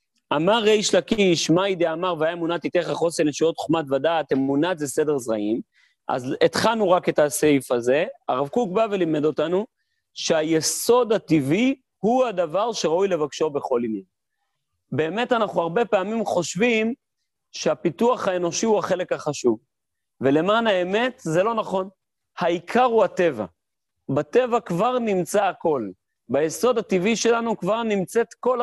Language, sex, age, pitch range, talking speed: Hebrew, male, 40-59, 155-220 Hz, 130 wpm